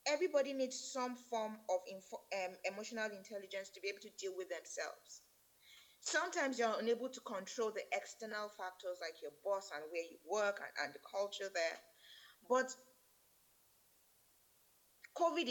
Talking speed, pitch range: 145 wpm, 185-230 Hz